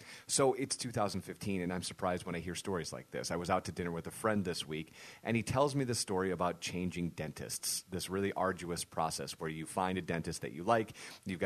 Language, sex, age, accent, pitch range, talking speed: English, male, 30-49, American, 85-100 Hz, 230 wpm